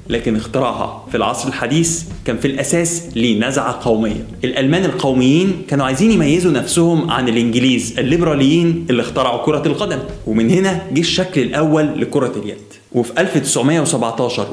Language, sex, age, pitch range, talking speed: Arabic, male, 20-39, 125-170 Hz, 130 wpm